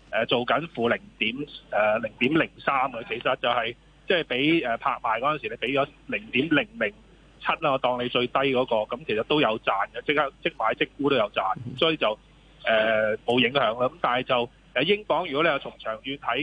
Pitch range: 125-165 Hz